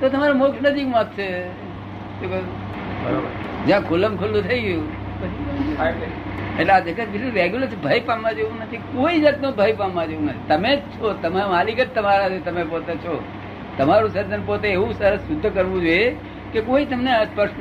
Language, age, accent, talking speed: Gujarati, 60-79, native, 50 wpm